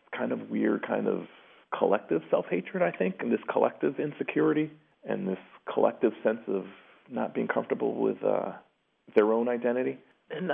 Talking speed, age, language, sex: 160 wpm, 40-59, English, male